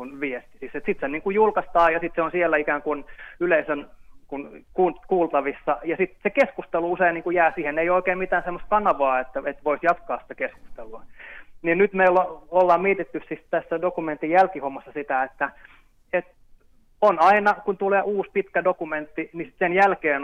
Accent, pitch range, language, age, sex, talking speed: native, 145-185 Hz, Finnish, 20-39, male, 170 wpm